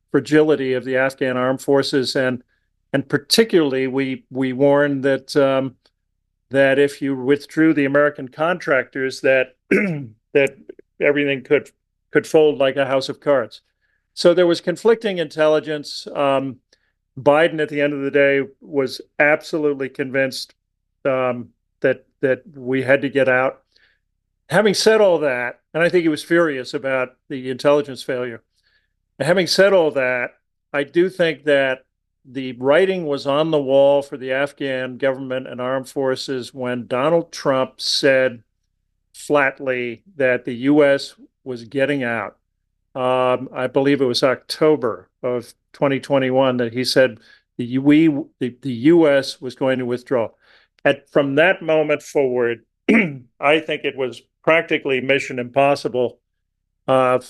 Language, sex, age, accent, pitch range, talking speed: English, male, 40-59, American, 125-145 Hz, 140 wpm